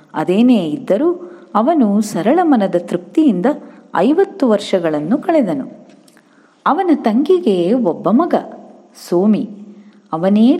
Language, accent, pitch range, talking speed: Kannada, native, 175-265 Hz, 85 wpm